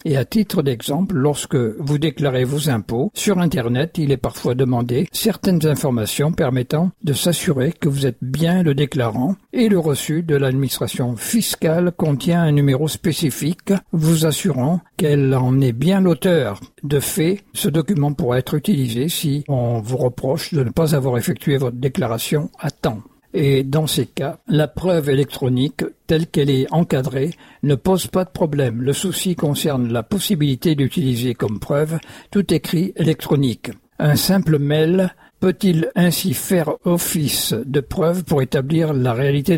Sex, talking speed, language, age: male, 155 wpm, French, 60-79